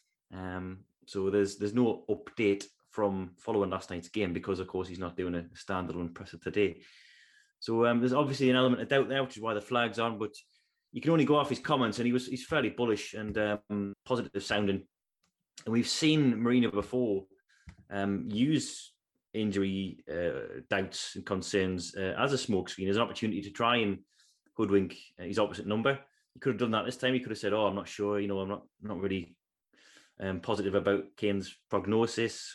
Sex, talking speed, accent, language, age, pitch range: male, 195 wpm, British, English, 20-39, 95-120 Hz